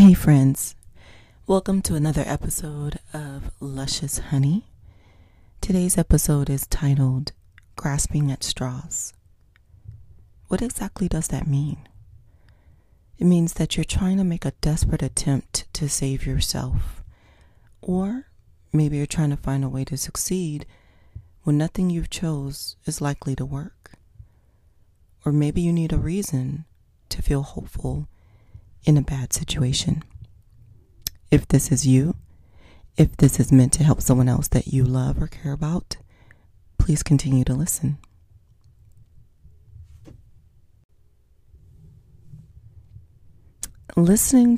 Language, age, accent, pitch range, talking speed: English, 30-49, American, 100-150 Hz, 120 wpm